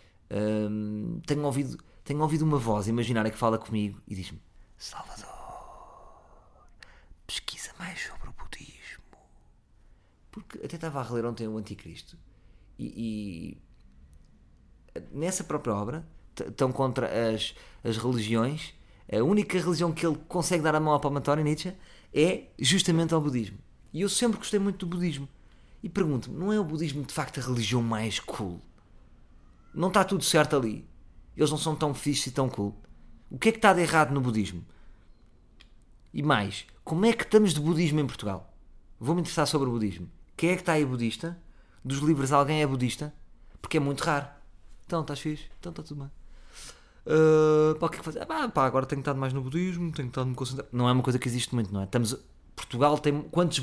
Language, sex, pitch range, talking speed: Portuguese, male, 110-160 Hz, 185 wpm